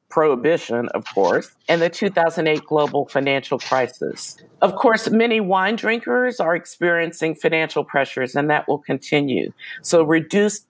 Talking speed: 135 wpm